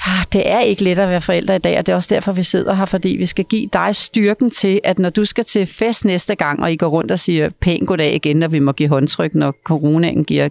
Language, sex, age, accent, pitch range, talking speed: Danish, female, 40-59, native, 170-225 Hz, 280 wpm